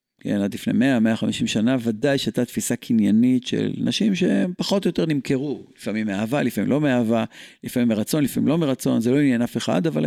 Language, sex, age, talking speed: Hebrew, male, 50-69, 190 wpm